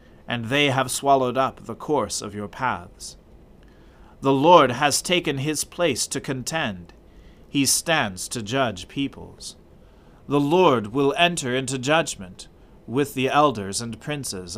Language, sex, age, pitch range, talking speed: English, male, 30-49, 115-150 Hz, 140 wpm